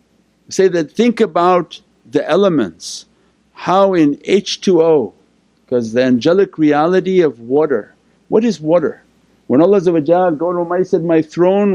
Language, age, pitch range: English, 60-79, 145-200 Hz